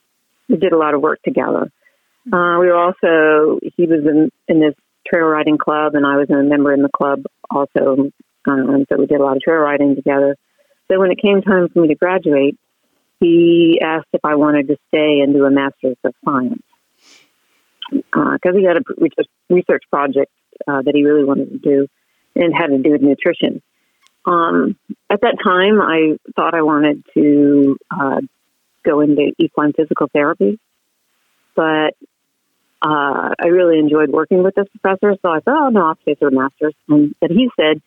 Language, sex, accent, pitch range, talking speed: English, female, American, 145-185 Hz, 185 wpm